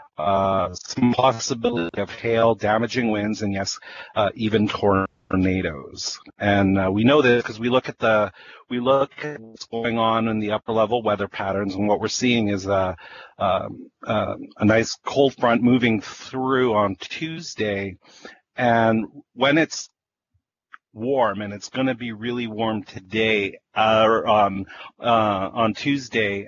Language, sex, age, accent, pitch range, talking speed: English, male, 40-59, American, 100-120 Hz, 155 wpm